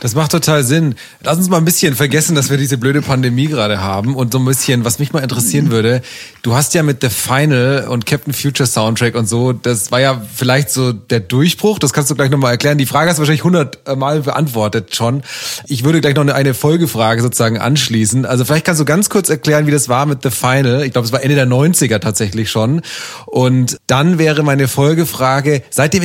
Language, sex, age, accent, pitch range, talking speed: German, male, 30-49, German, 125-155 Hz, 220 wpm